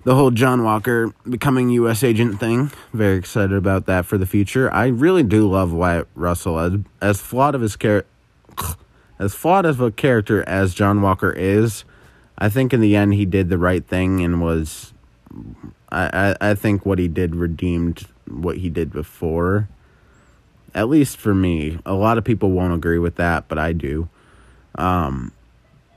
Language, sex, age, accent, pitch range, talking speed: English, male, 20-39, American, 90-115 Hz, 170 wpm